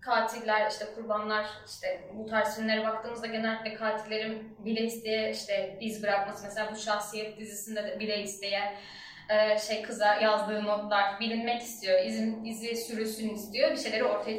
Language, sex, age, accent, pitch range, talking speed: Turkish, female, 10-29, native, 210-265 Hz, 145 wpm